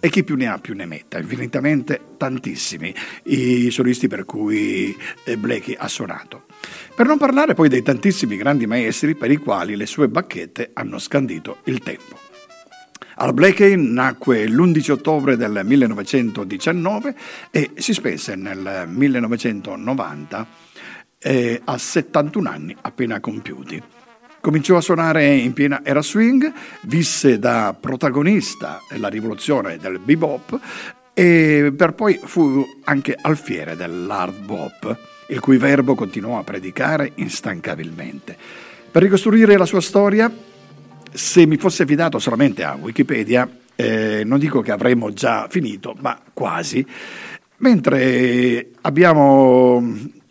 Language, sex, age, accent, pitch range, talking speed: Italian, male, 50-69, native, 125-200 Hz, 125 wpm